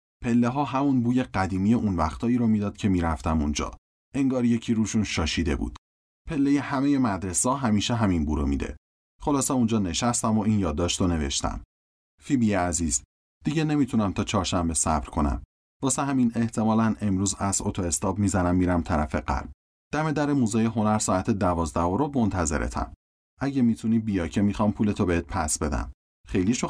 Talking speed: 155 wpm